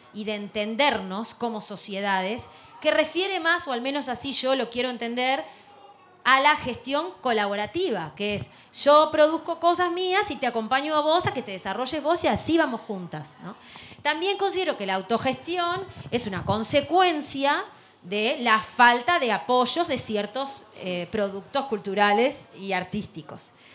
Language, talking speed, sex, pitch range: Spanish, 150 wpm, female, 195-270 Hz